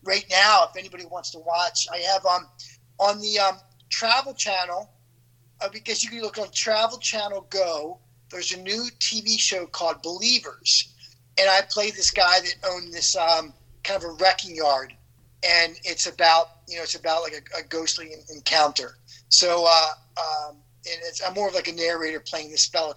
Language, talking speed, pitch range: English, 185 wpm, 145-195 Hz